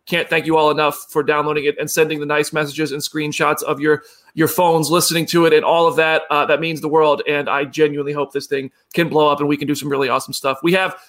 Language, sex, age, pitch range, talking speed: English, male, 30-49, 150-205 Hz, 270 wpm